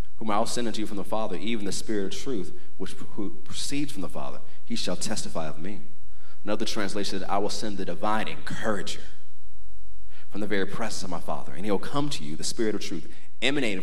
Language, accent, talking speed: English, American, 220 wpm